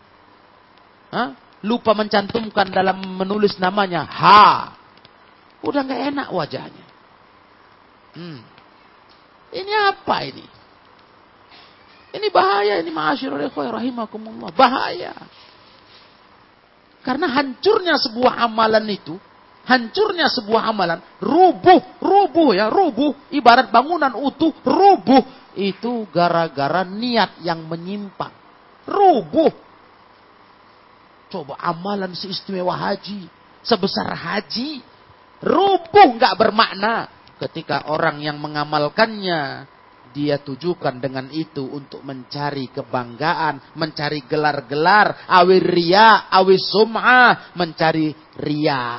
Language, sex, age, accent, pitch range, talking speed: Indonesian, male, 40-59, native, 140-235 Hz, 85 wpm